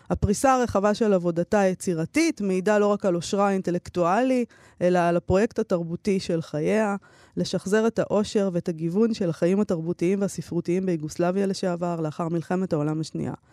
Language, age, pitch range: Hebrew, 20-39, 170-210 Hz